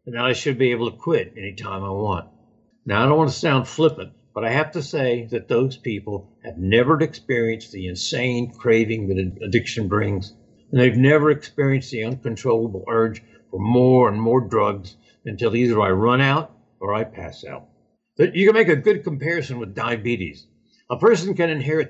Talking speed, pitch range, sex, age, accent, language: 190 wpm, 110-150 Hz, male, 60-79, American, English